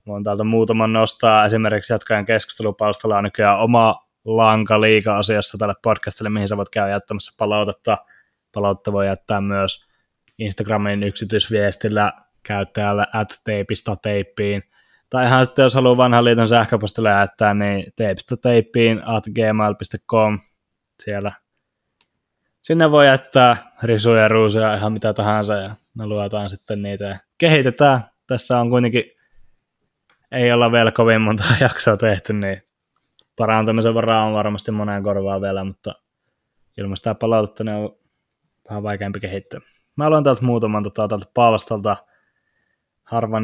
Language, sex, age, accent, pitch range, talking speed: Finnish, male, 20-39, native, 105-115 Hz, 135 wpm